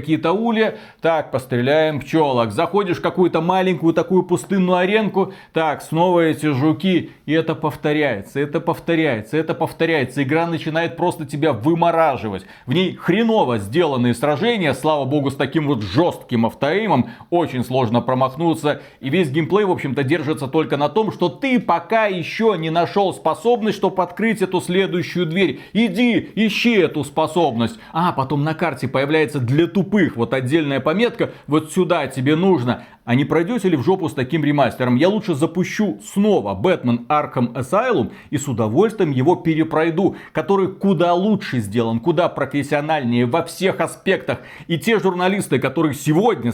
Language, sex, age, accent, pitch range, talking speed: Russian, male, 30-49, native, 140-180 Hz, 150 wpm